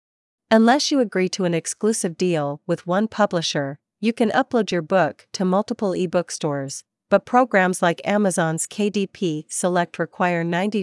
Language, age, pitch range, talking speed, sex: Vietnamese, 40-59, 165-200 Hz, 150 wpm, female